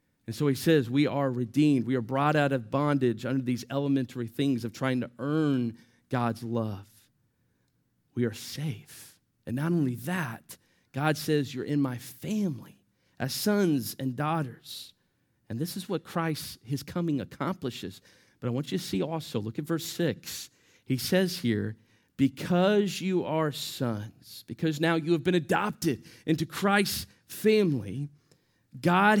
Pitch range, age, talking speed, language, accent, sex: 125-170 Hz, 40-59, 155 wpm, English, American, male